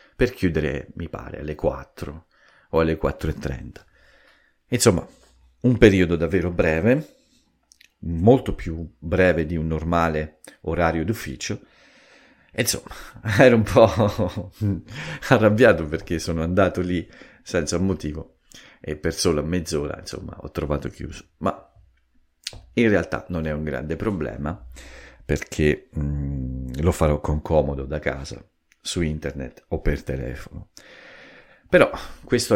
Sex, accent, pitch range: male, native, 75-95 Hz